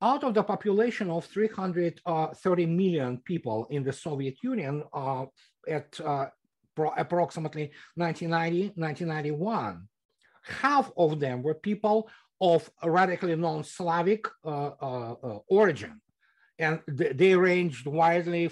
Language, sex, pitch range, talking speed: English, male, 145-185 Hz, 95 wpm